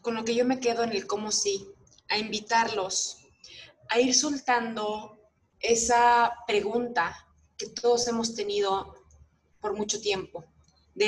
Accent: Mexican